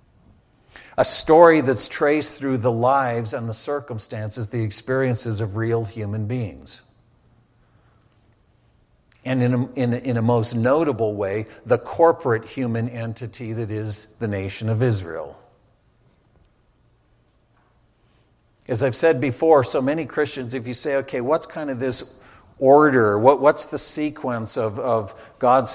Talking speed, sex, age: 130 wpm, male, 50-69